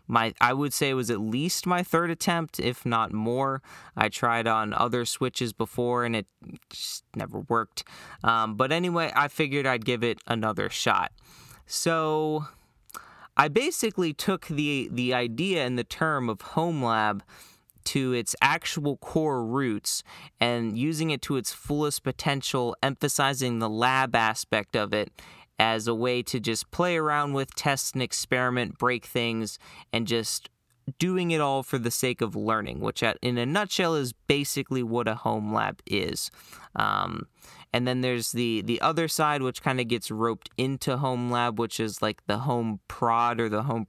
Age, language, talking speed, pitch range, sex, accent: 20-39, English, 170 wpm, 115-145 Hz, male, American